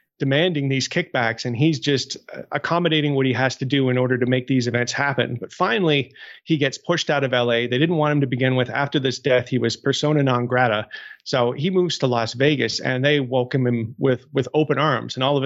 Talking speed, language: 235 wpm, English